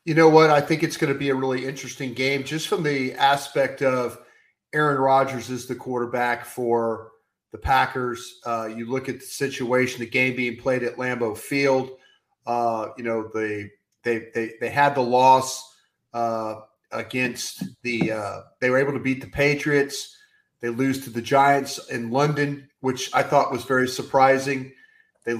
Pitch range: 120-140 Hz